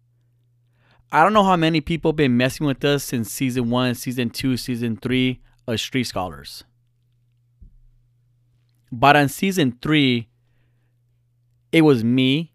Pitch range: 120-135 Hz